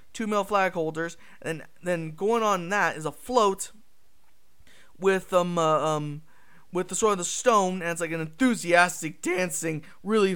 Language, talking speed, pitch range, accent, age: English, 175 wpm, 160-205 Hz, American, 20-39